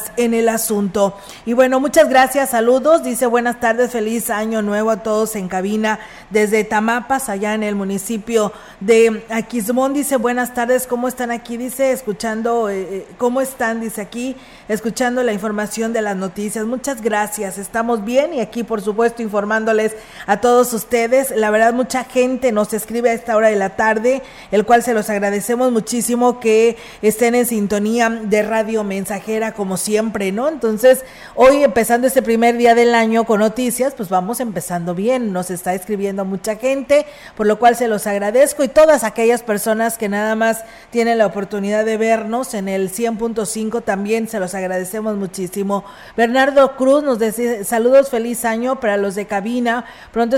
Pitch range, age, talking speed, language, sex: 210-240 Hz, 40-59, 170 wpm, Spanish, female